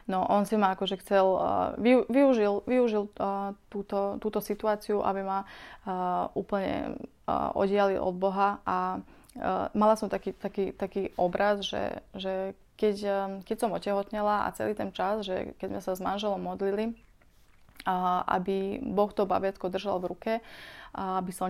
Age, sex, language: 20-39, female, Slovak